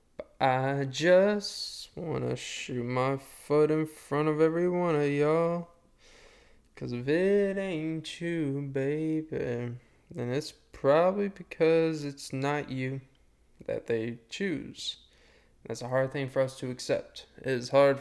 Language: English